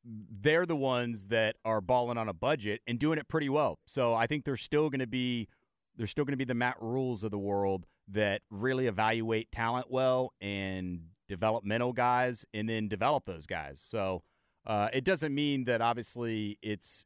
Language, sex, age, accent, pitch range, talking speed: English, male, 30-49, American, 105-135 Hz, 190 wpm